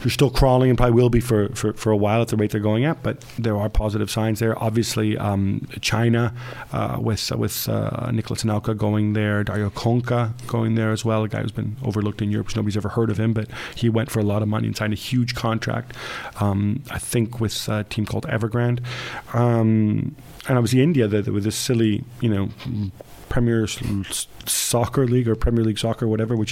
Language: English